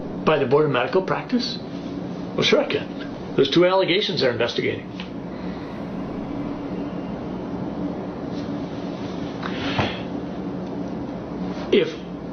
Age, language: 60-79, English